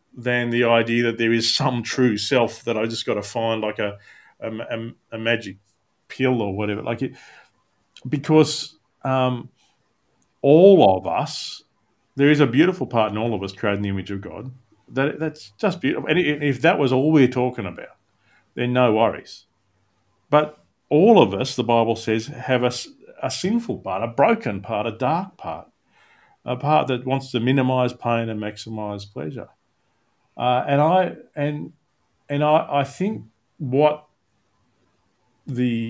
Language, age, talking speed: English, 40-59, 165 wpm